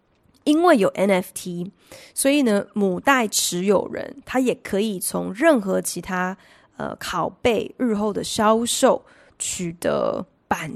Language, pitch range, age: Chinese, 185-235 Hz, 20-39